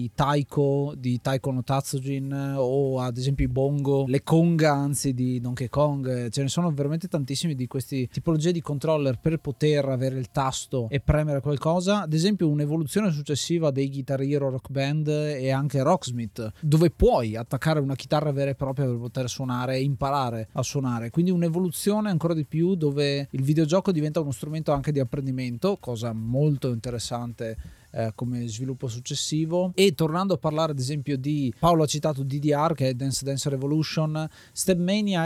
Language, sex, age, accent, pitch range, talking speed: Italian, male, 20-39, native, 130-155 Hz, 170 wpm